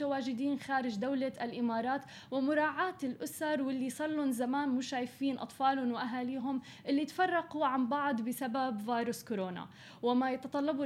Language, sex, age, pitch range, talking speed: Arabic, female, 20-39, 240-290 Hz, 115 wpm